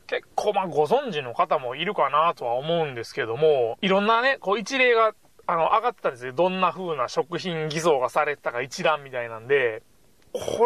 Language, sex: Japanese, male